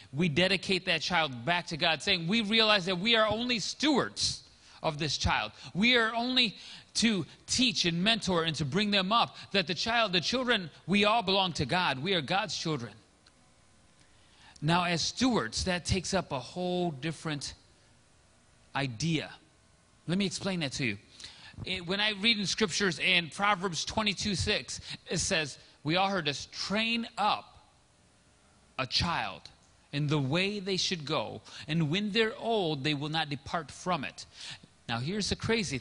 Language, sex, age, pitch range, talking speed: English, male, 30-49, 145-205 Hz, 165 wpm